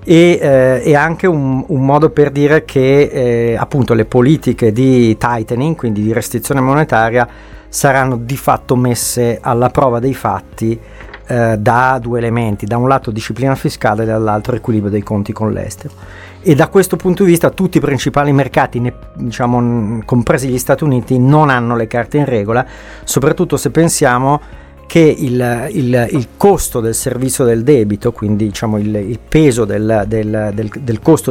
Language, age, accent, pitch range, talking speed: Italian, 40-59, native, 110-135 Hz, 170 wpm